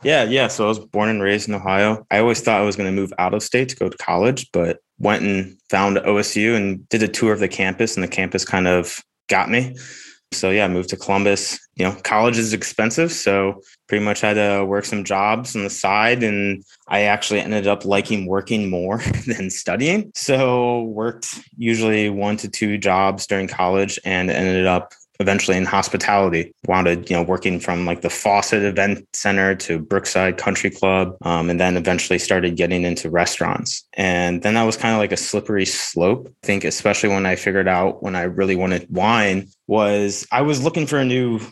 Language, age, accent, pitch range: English, 20-39, American, 95-110 Hz